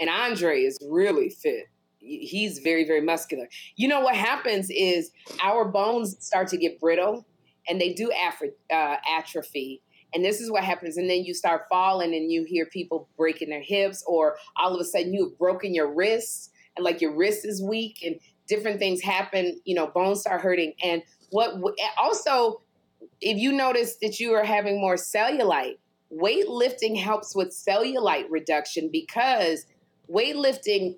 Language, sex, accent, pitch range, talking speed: English, female, American, 175-220 Hz, 165 wpm